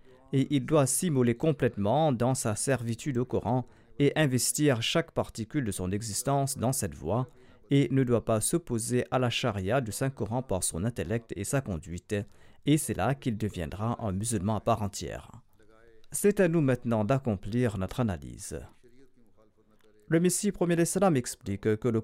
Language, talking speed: French, 165 wpm